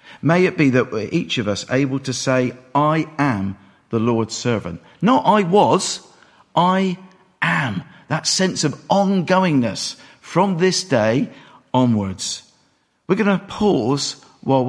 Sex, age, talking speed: male, 50-69, 140 wpm